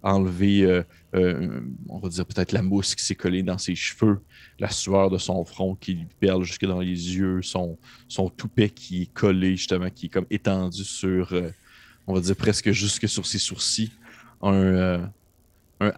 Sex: male